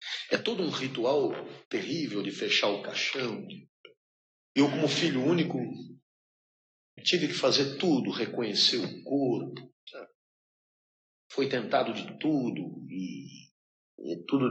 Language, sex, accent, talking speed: Portuguese, male, Brazilian, 110 wpm